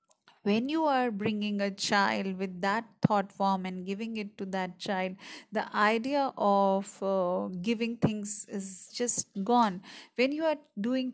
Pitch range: 190-230 Hz